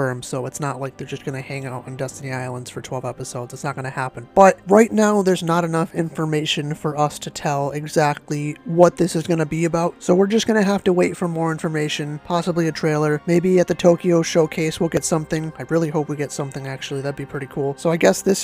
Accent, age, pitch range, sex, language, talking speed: American, 30-49, 150-175 Hz, male, English, 250 wpm